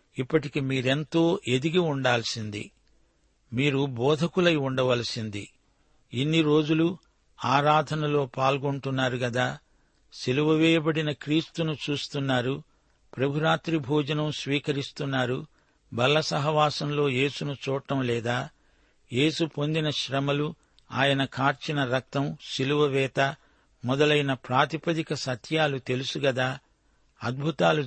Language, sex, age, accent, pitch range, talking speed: Telugu, male, 60-79, native, 130-155 Hz, 80 wpm